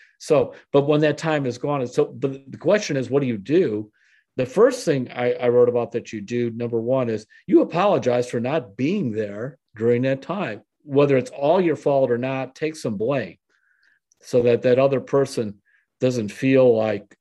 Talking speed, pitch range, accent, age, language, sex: 200 wpm, 115-135 Hz, American, 50-69, English, male